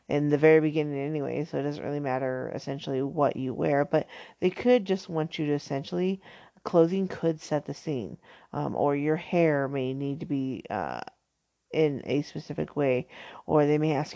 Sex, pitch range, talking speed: female, 145-185 Hz, 185 wpm